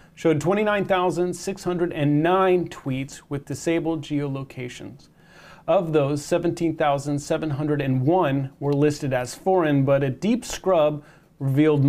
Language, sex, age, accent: English, male, 30-49, American